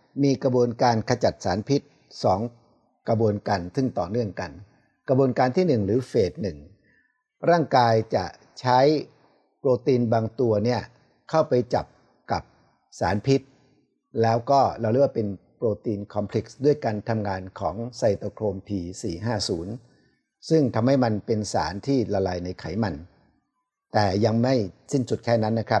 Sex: male